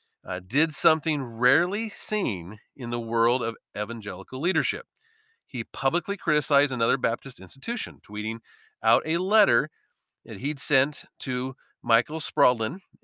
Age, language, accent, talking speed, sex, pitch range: 40-59, English, American, 125 wpm, male, 120-155 Hz